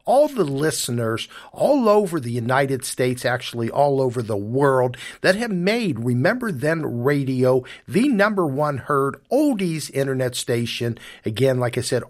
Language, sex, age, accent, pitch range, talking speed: English, male, 50-69, American, 120-160 Hz, 150 wpm